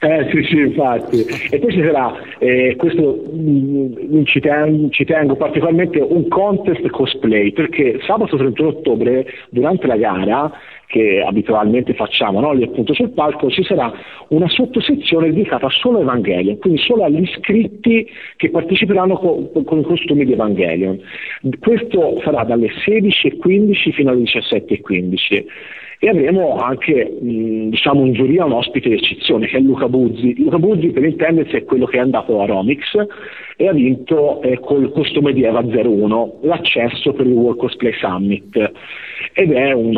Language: Italian